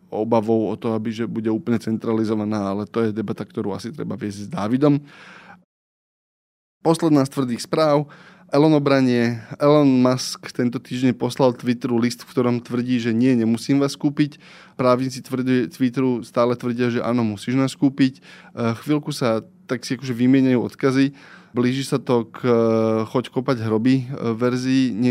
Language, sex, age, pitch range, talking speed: Slovak, male, 20-39, 115-130 Hz, 150 wpm